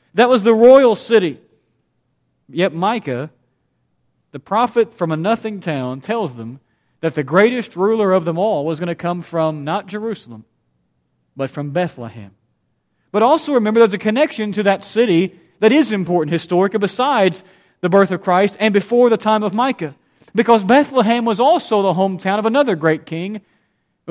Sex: male